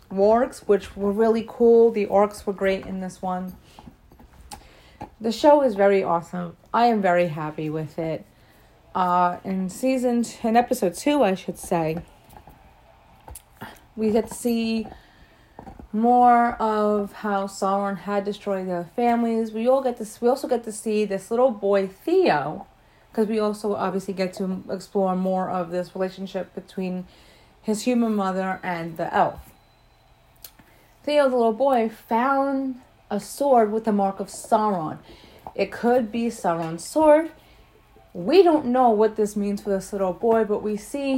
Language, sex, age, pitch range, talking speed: English, female, 30-49, 195-240 Hz, 155 wpm